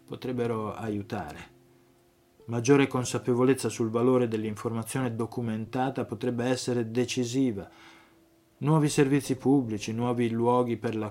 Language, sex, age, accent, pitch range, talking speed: Italian, male, 20-39, native, 105-125 Hz, 95 wpm